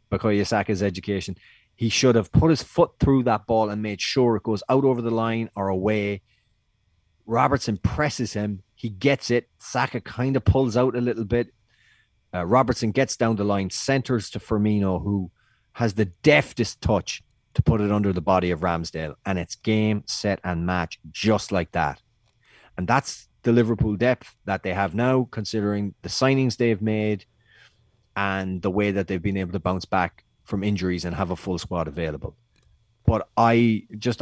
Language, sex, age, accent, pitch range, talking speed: English, male, 30-49, Irish, 95-120 Hz, 180 wpm